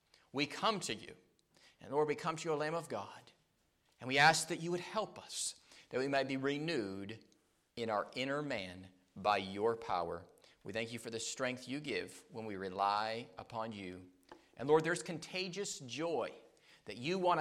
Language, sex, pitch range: English, male, 115-180 Hz